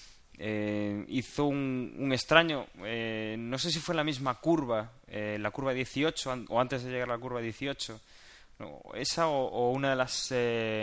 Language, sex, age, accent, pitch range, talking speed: Spanish, male, 20-39, Spanish, 115-140 Hz, 195 wpm